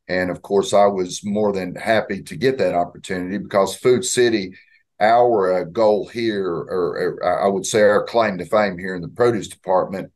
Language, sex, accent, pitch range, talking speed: English, male, American, 100-115 Hz, 185 wpm